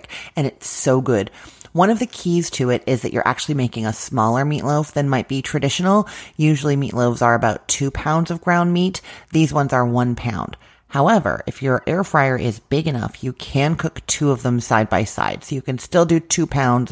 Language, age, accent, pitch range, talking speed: English, 30-49, American, 120-155 Hz, 215 wpm